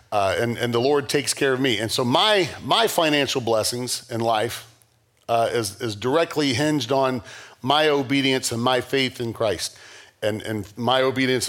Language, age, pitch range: English, 40-59, 115-155 Hz